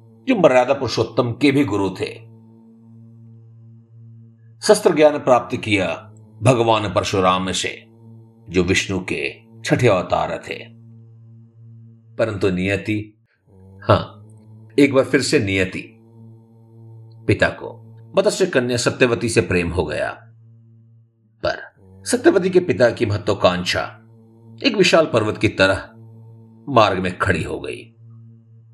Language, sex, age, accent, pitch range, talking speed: Hindi, male, 50-69, native, 105-115 Hz, 110 wpm